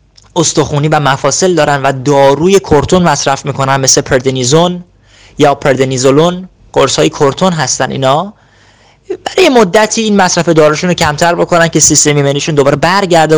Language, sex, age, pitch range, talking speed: Persian, male, 30-49, 120-170 Hz, 135 wpm